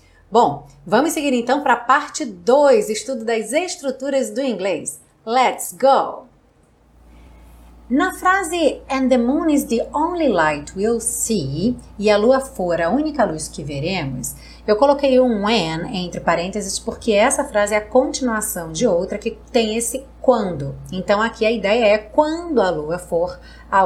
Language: Portuguese